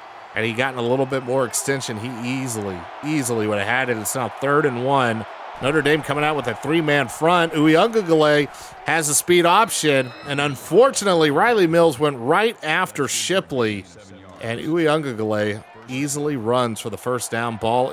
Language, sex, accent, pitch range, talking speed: English, male, American, 120-155 Hz, 165 wpm